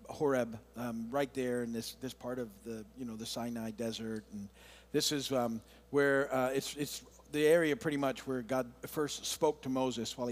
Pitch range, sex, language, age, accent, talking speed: 120-150 Hz, male, English, 50-69, American, 200 wpm